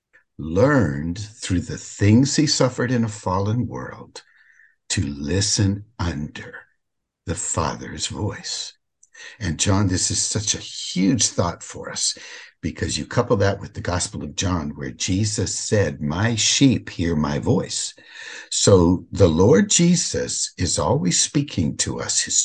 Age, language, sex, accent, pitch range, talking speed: 60-79, English, male, American, 85-135 Hz, 140 wpm